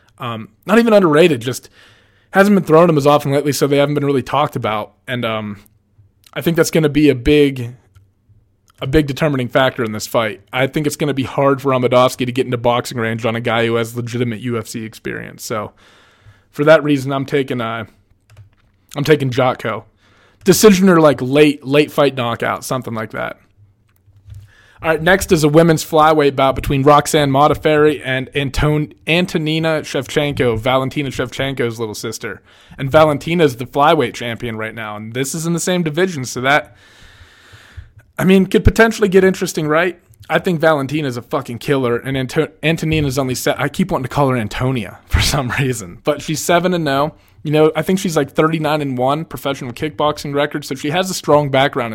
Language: English